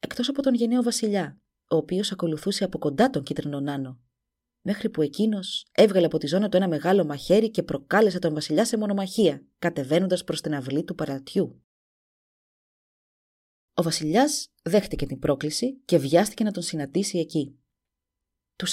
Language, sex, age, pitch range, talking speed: Greek, female, 30-49, 150-195 Hz, 155 wpm